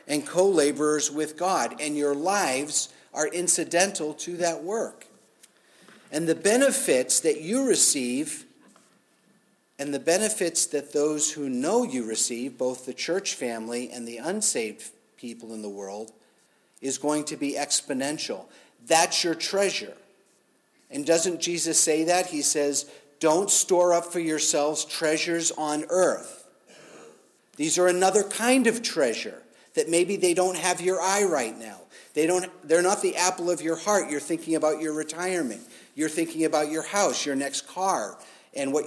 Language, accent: English, American